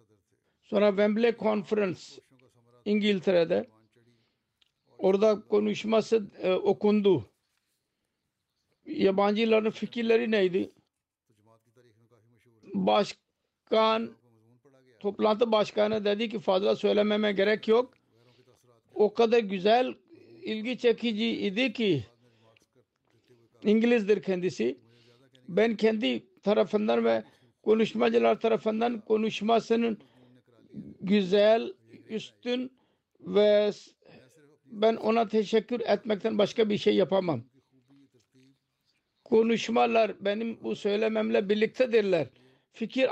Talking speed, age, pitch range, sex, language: 75 wpm, 60-79, 145-225 Hz, male, Turkish